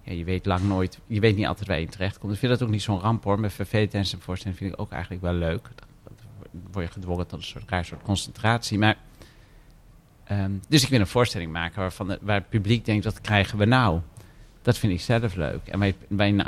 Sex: male